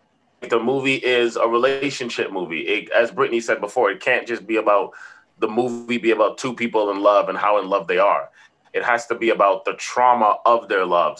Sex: male